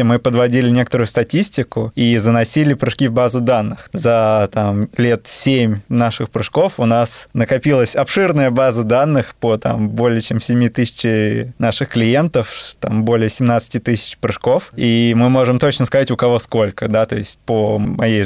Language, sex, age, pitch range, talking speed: Russian, male, 20-39, 115-135 Hz, 160 wpm